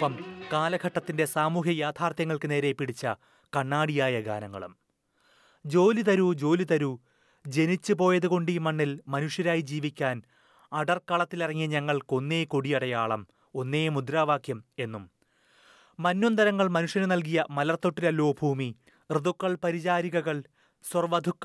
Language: Malayalam